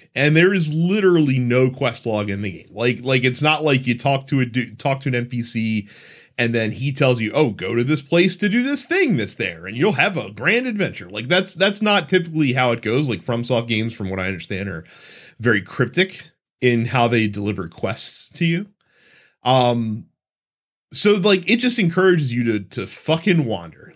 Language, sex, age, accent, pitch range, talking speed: English, male, 30-49, American, 120-180 Hz, 205 wpm